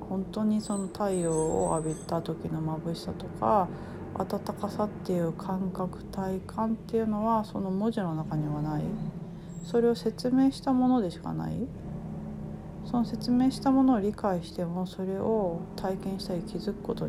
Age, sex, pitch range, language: 40-59, female, 170-210 Hz, Japanese